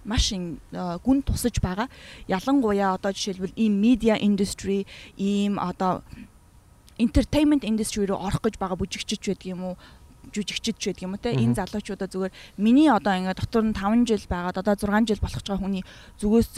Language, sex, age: Korean, female, 20-39